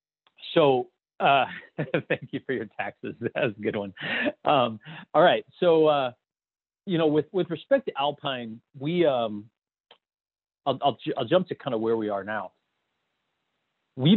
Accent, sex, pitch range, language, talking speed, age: American, male, 105-130 Hz, English, 165 wpm, 40-59